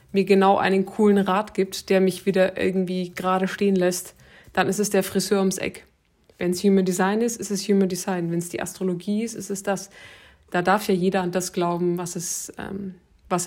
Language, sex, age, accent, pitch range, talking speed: German, female, 20-39, German, 175-195 Hz, 215 wpm